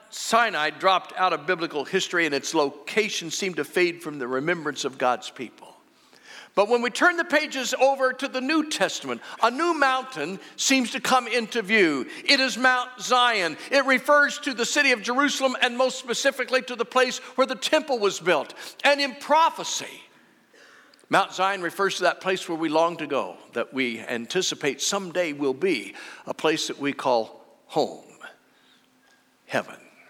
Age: 50-69